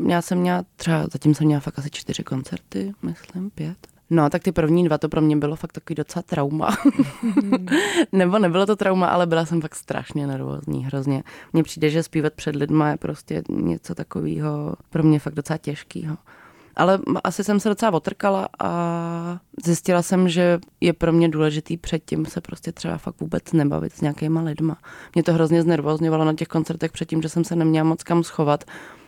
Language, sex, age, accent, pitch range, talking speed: Czech, female, 20-39, native, 155-185 Hz, 190 wpm